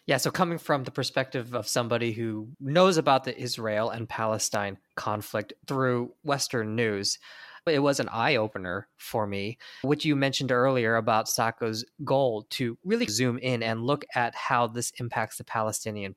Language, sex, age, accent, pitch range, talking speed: English, male, 20-39, American, 115-140 Hz, 165 wpm